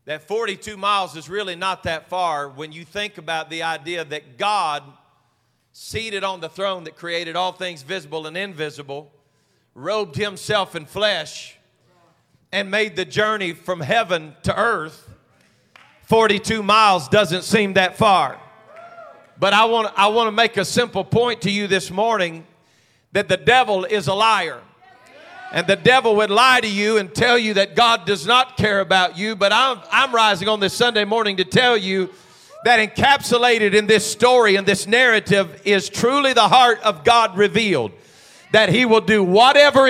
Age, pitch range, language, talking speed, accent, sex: 40-59, 190-240 Hz, English, 170 wpm, American, male